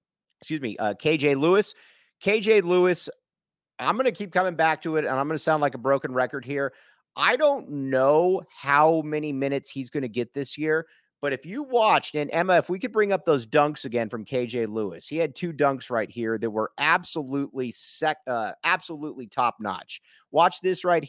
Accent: American